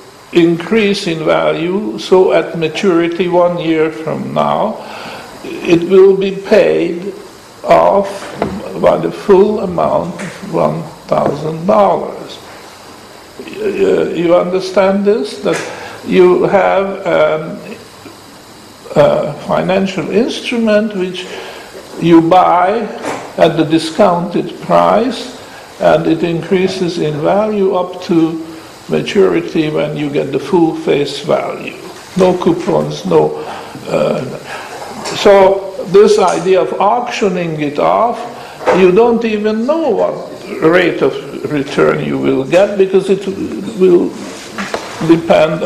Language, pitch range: English, 165-210 Hz